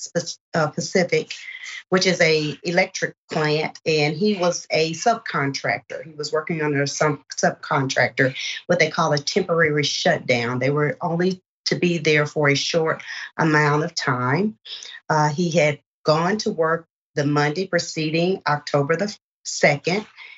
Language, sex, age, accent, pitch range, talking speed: English, female, 40-59, American, 150-190 Hz, 140 wpm